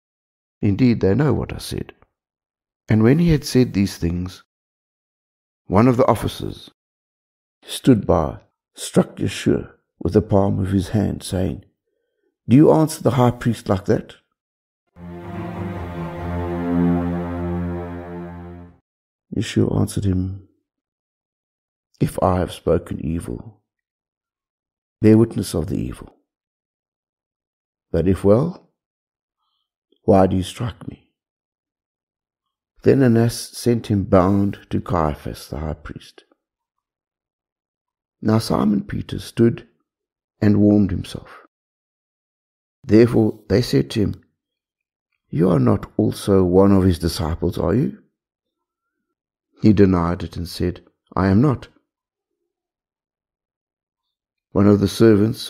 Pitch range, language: 85-115 Hz, English